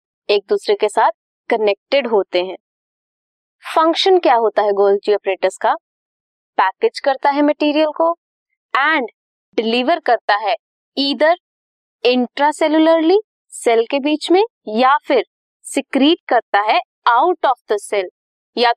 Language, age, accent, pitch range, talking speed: Hindi, 20-39, native, 230-330 Hz, 125 wpm